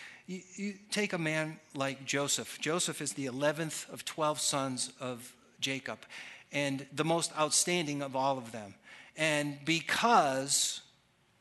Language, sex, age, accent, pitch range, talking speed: English, male, 50-69, American, 145-185 Hz, 130 wpm